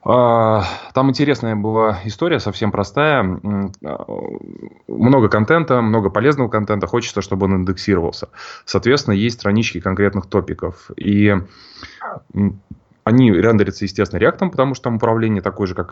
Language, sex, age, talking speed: Russian, male, 20-39, 120 wpm